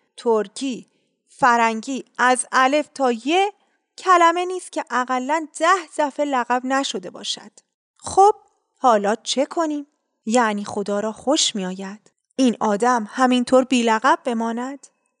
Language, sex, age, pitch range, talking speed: Persian, female, 30-49, 230-330 Hz, 120 wpm